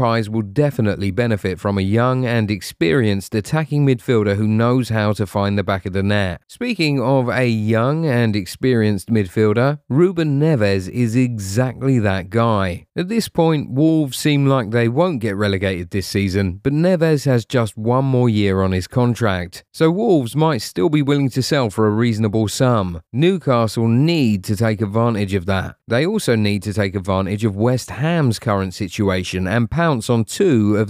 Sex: male